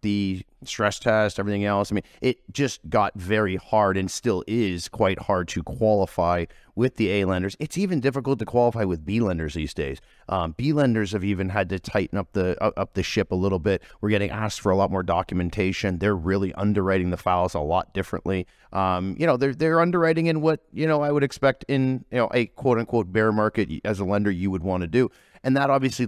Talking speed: 220 wpm